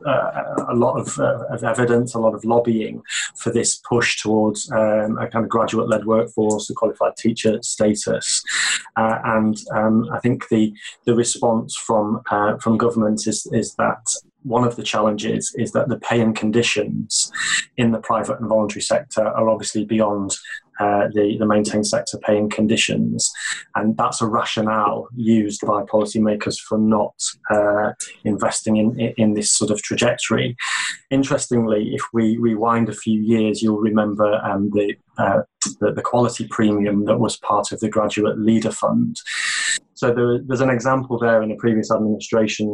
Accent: British